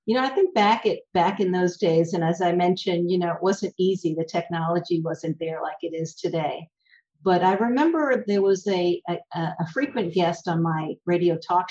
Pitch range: 170-195 Hz